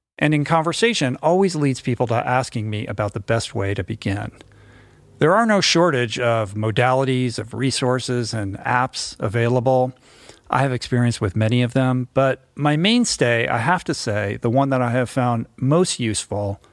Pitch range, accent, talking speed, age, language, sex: 110-135 Hz, American, 170 wpm, 50-69, English, male